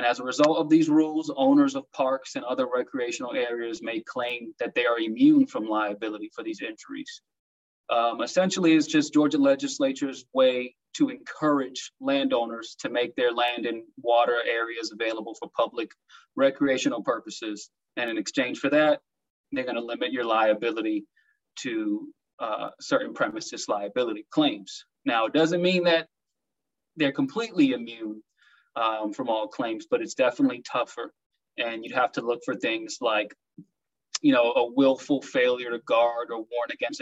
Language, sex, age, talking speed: English, male, 30-49, 155 wpm